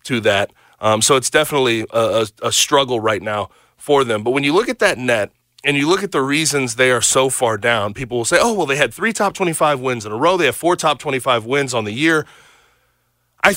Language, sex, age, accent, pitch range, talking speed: English, male, 30-49, American, 115-145 Hz, 250 wpm